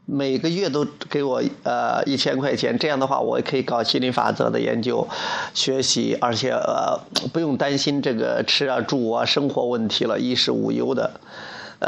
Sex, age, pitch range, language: male, 30-49, 130-160 Hz, Chinese